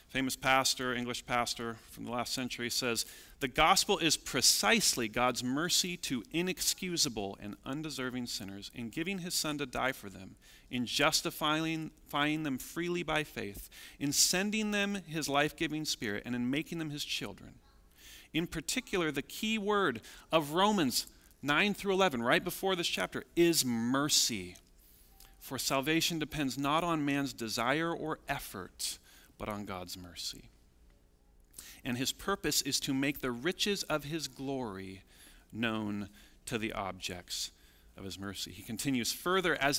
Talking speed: 145 wpm